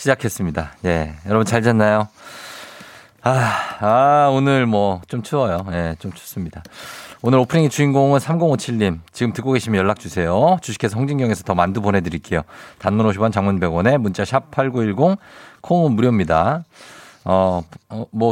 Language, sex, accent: Korean, male, native